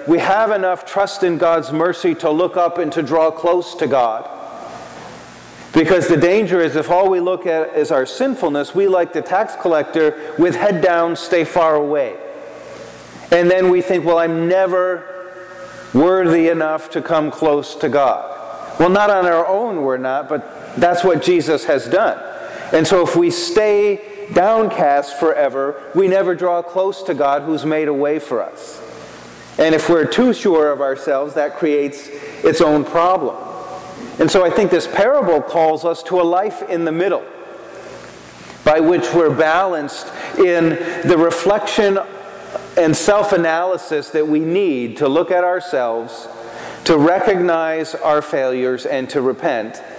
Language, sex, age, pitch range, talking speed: English, male, 40-59, 155-185 Hz, 160 wpm